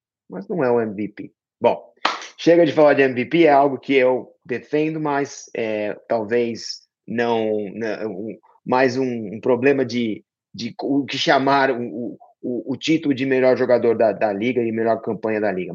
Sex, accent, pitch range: male, Brazilian, 110-140 Hz